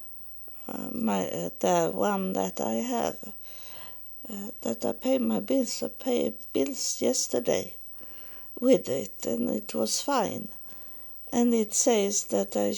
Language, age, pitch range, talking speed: English, 50-69, 180-240 Hz, 135 wpm